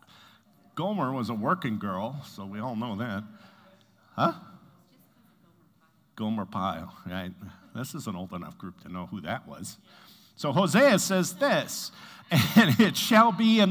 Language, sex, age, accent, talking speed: English, male, 50-69, American, 150 wpm